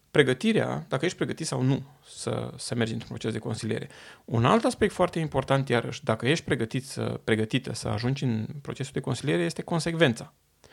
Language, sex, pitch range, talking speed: Romanian, male, 125-165 Hz, 180 wpm